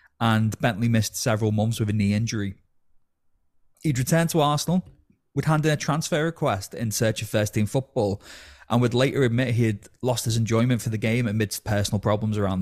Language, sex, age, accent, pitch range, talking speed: English, male, 20-39, British, 105-130 Hz, 190 wpm